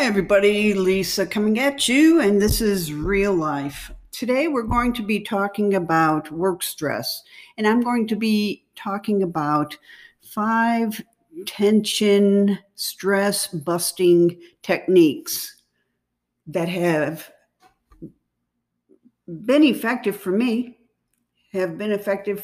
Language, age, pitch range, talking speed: English, 60-79, 175-225 Hz, 105 wpm